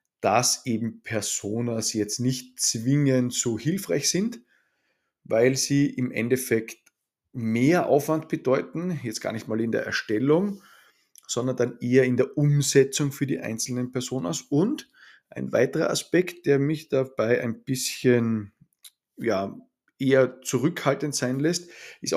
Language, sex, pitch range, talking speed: German, male, 115-150 Hz, 130 wpm